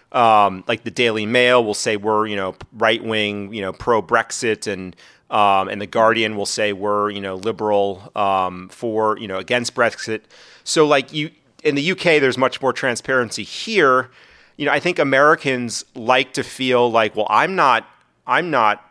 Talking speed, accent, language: 185 wpm, American, English